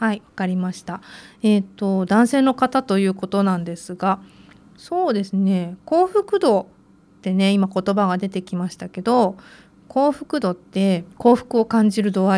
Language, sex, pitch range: Japanese, female, 190-265 Hz